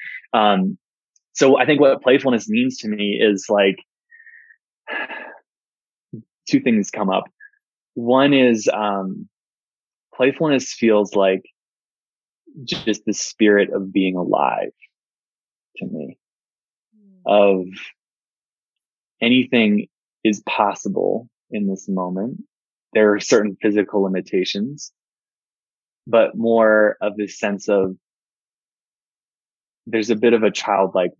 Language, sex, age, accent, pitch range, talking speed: English, male, 20-39, American, 100-140 Hz, 100 wpm